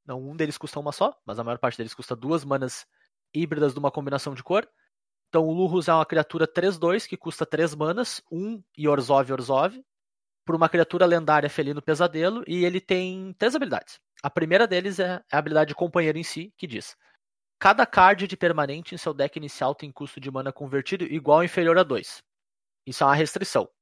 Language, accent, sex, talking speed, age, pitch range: Portuguese, Brazilian, male, 200 wpm, 20-39, 155-185 Hz